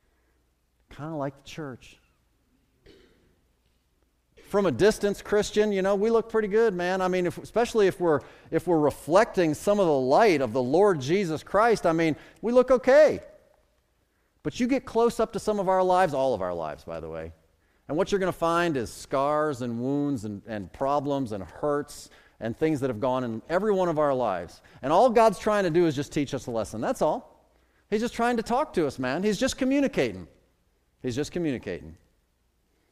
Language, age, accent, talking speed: English, 40-59, American, 200 wpm